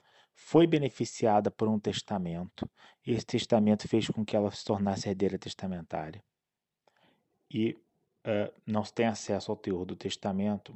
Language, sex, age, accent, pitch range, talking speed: Portuguese, male, 20-39, Brazilian, 100-115 Hz, 145 wpm